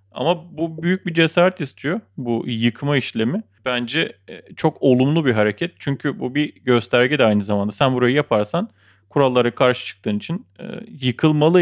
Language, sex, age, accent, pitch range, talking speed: Turkish, male, 30-49, native, 110-150 Hz, 155 wpm